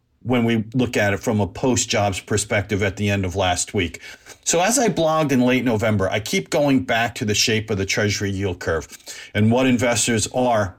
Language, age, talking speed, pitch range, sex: English, 50-69, 210 wpm, 105-135 Hz, male